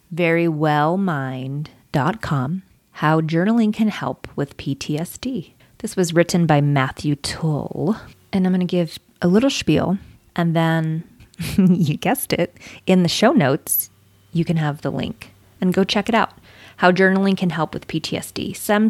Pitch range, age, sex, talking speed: 140-175 Hz, 30-49, female, 150 wpm